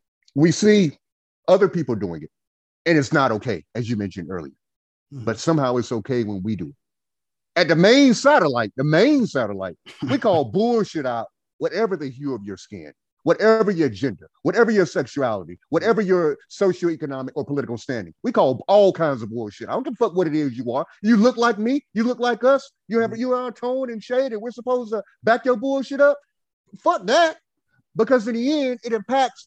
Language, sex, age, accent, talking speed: English, male, 30-49, American, 200 wpm